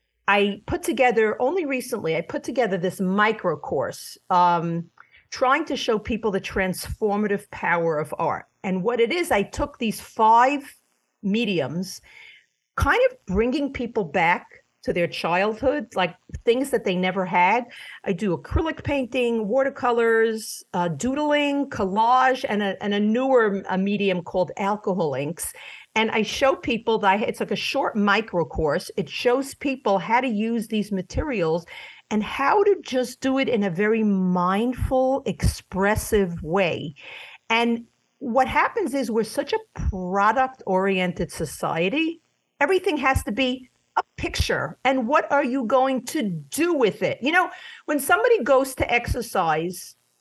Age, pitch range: 50-69, 195-265 Hz